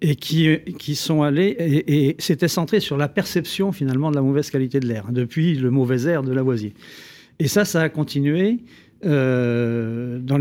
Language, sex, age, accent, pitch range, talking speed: French, male, 50-69, French, 130-170 Hz, 185 wpm